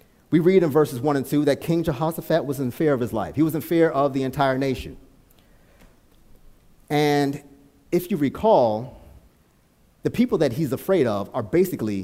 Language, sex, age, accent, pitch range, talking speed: English, male, 30-49, American, 115-155 Hz, 180 wpm